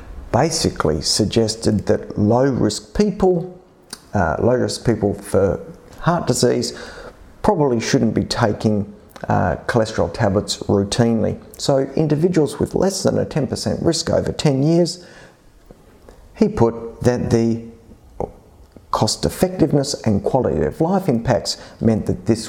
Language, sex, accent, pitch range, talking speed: English, male, Australian, 105-140 Hz, 125 wpm